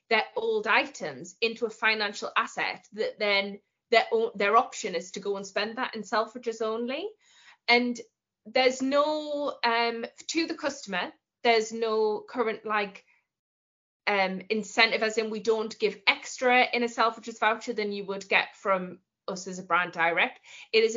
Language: Italian